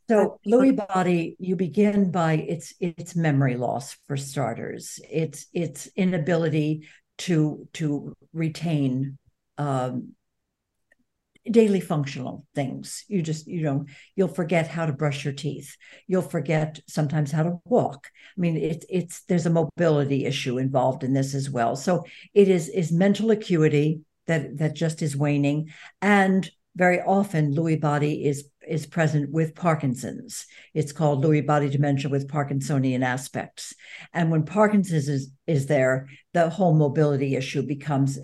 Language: English